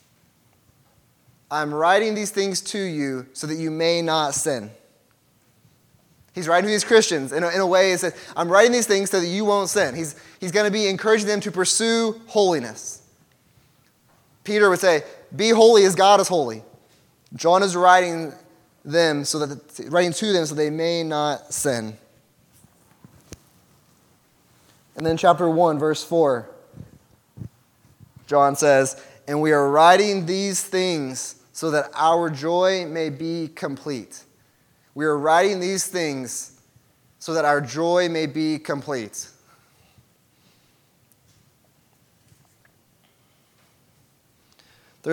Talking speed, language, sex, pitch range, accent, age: 125 wpm, English, male, 140-180 Hz, American, 20-39